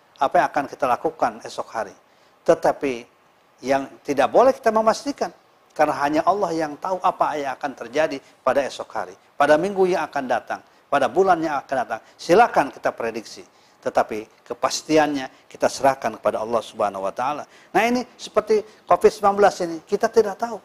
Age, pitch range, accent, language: 50-69, 130-190 Hz, native, Indonesian